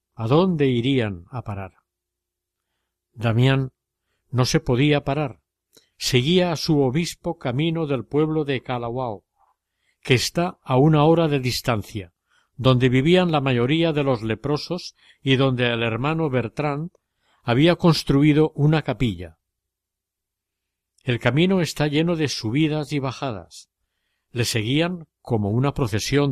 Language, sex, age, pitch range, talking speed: Spanish, male, 50-69, 115-150 Hz, 125 wpm